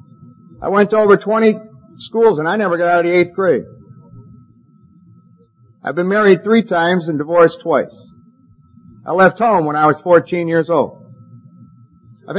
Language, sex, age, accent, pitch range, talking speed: English, male, 50-69, American, 140-185 Hz, 160 wpm